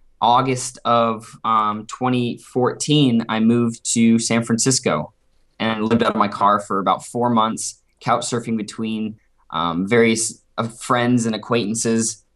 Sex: male